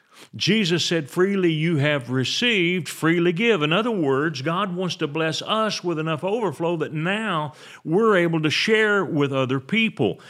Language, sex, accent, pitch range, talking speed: English, male, American, 130-170 Hz, 165 wpm